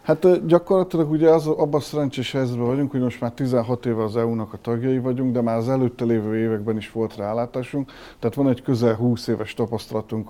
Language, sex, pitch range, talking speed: Hungarian, male, 115-130 Hz, 200 wpm